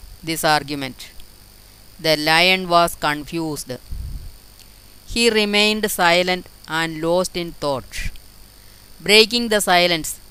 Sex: female